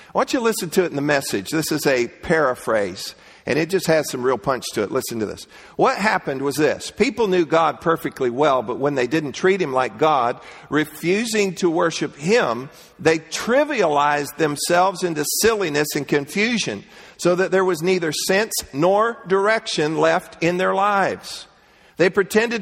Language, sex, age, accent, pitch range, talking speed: English, male, 50-69, American, 155-190 Hz, 180 wpm